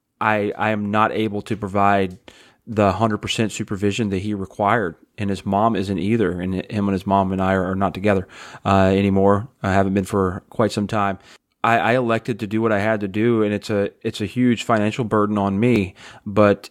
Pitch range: 100-110 Hz